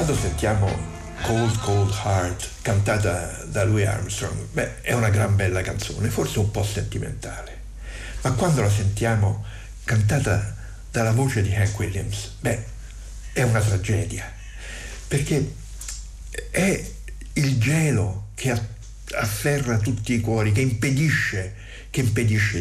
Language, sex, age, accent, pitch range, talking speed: Italian, male, 60-79, native, 100-120 Hz, 120 wpm